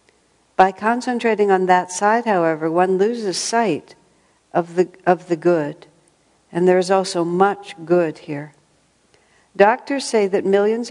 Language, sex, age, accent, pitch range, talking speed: English, female, 60-79, American, 160-205 Hz, 140 wpm